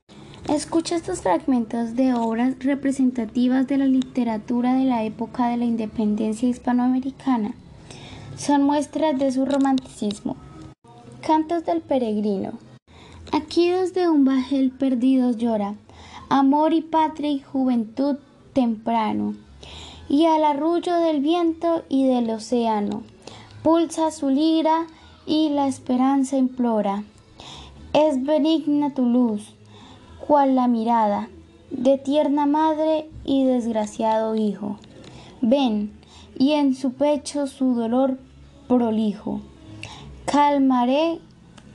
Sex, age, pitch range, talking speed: female, 10-29, 225-285 Hz, 105 wpm